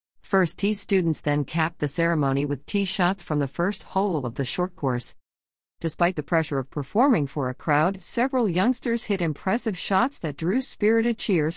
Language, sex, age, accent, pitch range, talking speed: English, female, 50-69, American, 145-190 Hz, 180 wpm